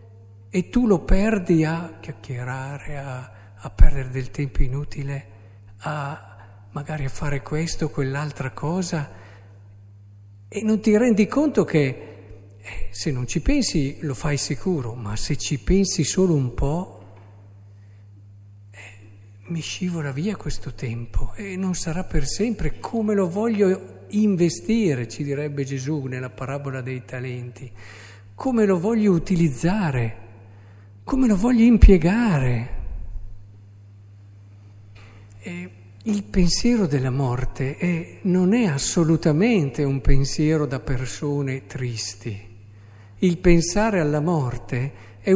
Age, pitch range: 50-69, 105-170 Hz